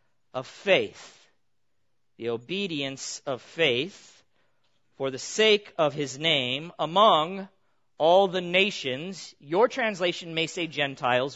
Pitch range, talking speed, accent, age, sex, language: 135-180 Hz, 110 wpm, American, 40-59, male, English